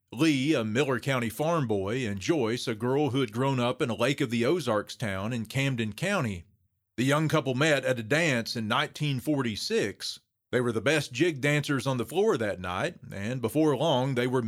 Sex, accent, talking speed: male, American, 205 wpm